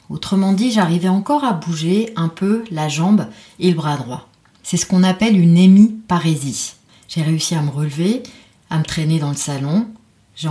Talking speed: 185 wpm